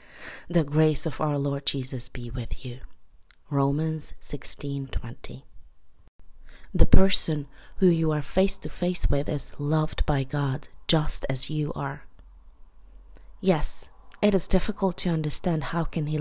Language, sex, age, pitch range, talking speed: English, female, 30-49, 120-170 Hz, 140 wpm